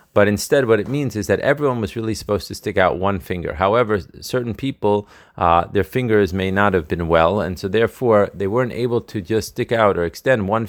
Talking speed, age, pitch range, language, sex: 225 wpm, 30-49, 95-115 Hz, Hebrew, male